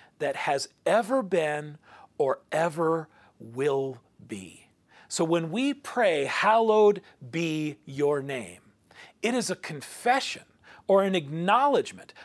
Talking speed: 115 wpm